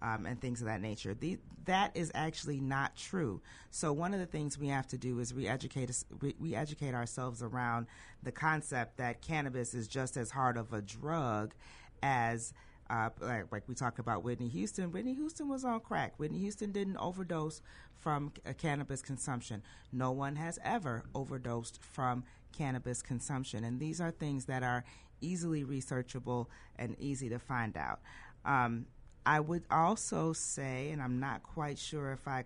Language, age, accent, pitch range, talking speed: English, 40-59, American, 120-150 Hz, 175 wpm